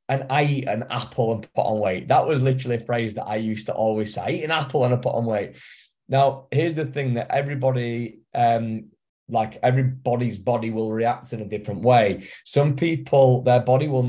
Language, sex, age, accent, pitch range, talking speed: English, male, 20-39, British, 110-130 Hz, 215 wpm